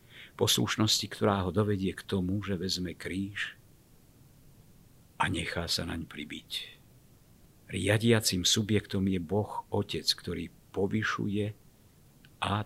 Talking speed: 105 wpm